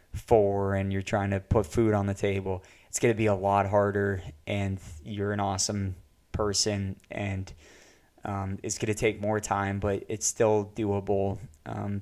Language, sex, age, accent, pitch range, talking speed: English, male, 20-39, American, 95-105 Hz, 175 wpm